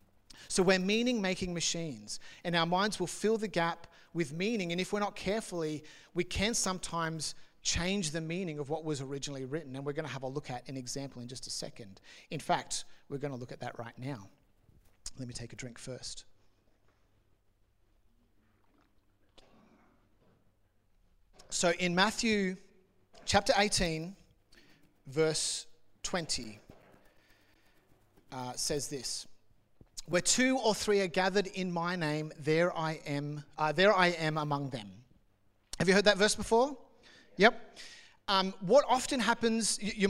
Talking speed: 150 wpm